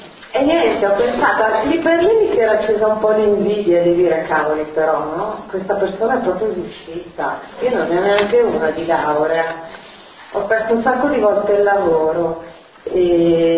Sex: female